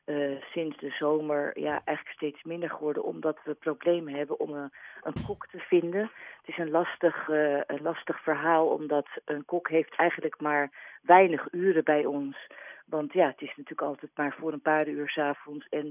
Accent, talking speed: Dutch, 185 wpm